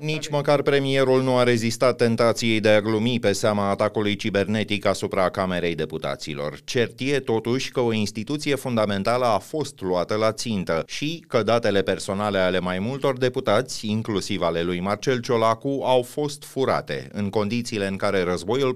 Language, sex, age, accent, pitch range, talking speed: Romanian, male, 30-49, native, 95-125 Hz, 155 wpm